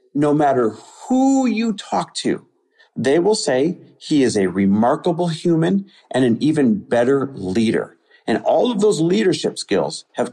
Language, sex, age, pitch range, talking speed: English, male, 50-69, 105-155 Hz, 150 wpm